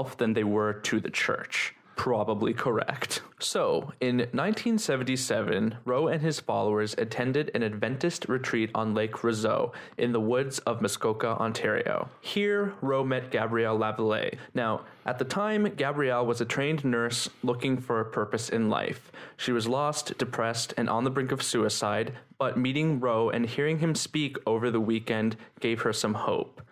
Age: 20-39